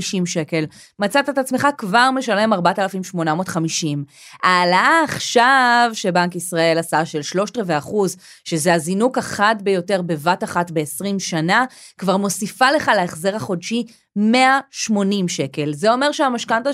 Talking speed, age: 120 wpm, 20-39